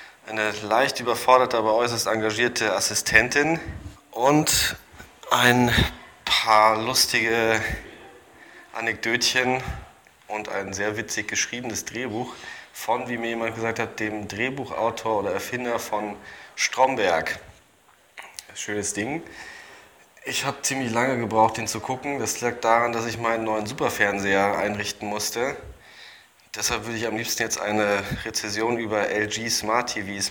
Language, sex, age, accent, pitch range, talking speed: German, male, 20-39, German, 105-120 Hz, 120 wpm